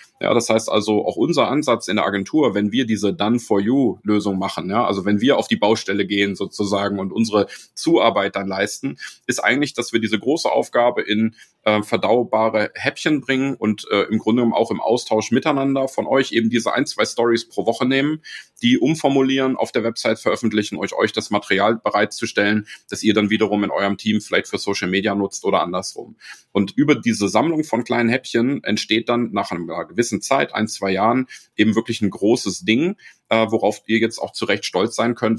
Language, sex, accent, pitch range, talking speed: German, male, German, 100-125 Hz, 195 wpm